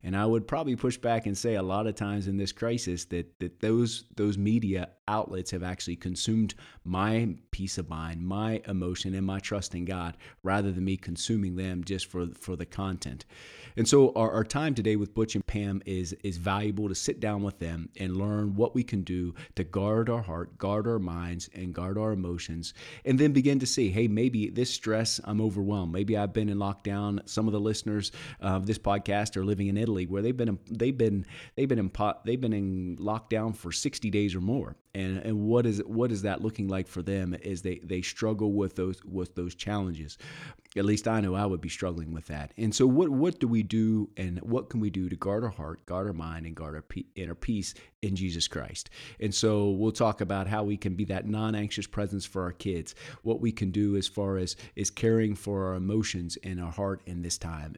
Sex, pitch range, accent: male, 95-110 Hz, American